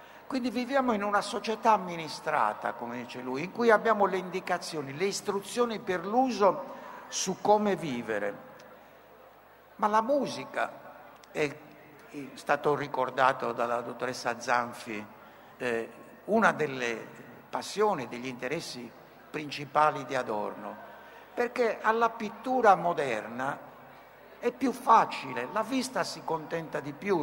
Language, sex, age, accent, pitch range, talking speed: Italian, male, 60-79, native, 145-205 Hz, 115 wpm